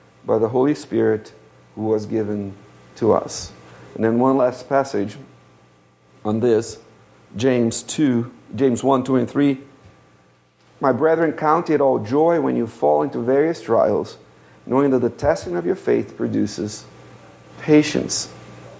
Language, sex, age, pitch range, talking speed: English, male, 50-69, 105-140 Hz, 135 wpm